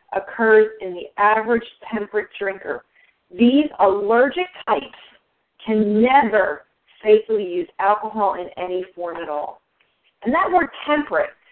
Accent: American